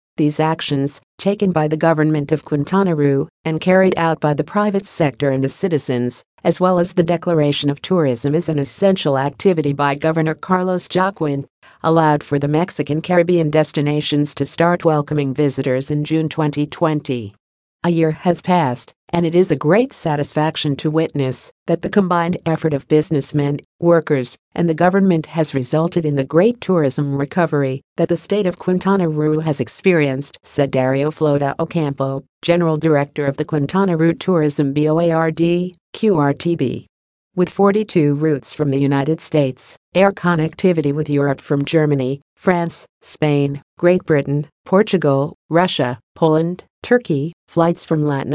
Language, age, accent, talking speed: English, 50-69, American, 150 wpm